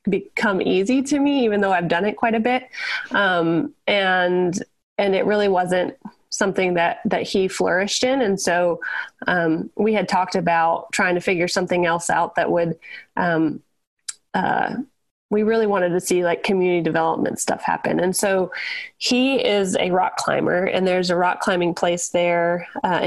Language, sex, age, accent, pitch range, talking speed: English, female, 20-39, American, 175-205 Hz, 170 wpm